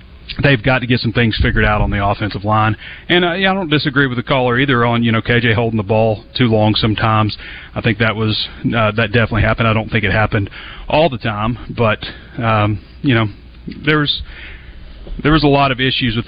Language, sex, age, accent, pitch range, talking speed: English, male, 30-49, American, 110-125 Hz, 220 wpm